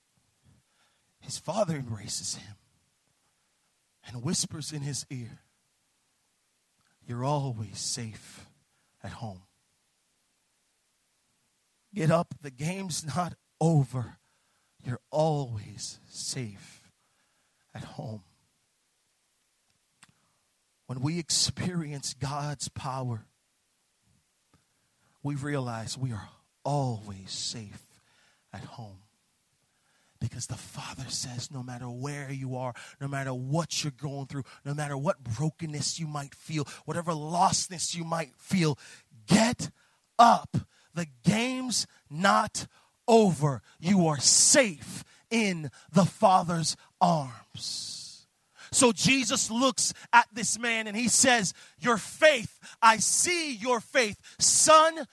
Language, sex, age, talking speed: English, male, 40-59, 100 wpm